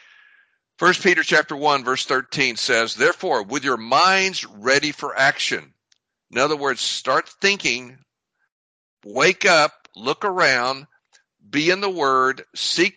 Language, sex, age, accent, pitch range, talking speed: English, male, 60-79, American, 125-180 Hz, 130 wpm